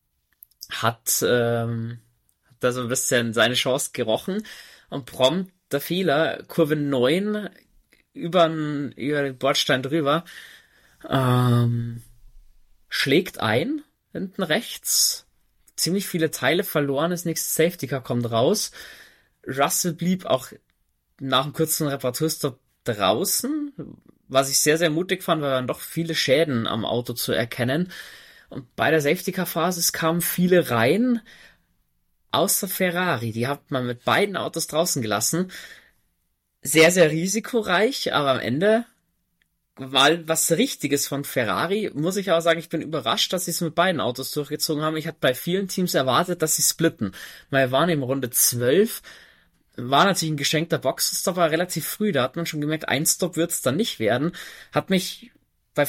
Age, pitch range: 20-39, 130-180 Hz